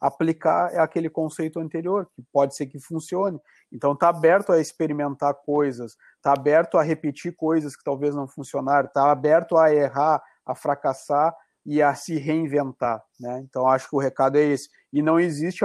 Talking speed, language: 175 wpm, Portuguese